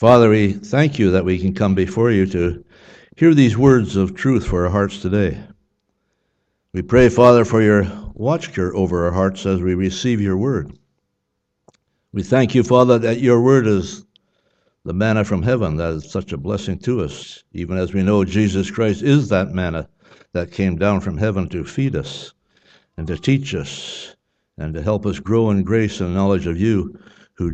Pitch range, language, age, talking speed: 90-110 Hz, English, 60-79, 185 wpm